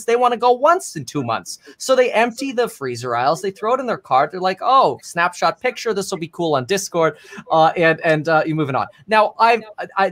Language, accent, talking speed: English, American, 245 wpm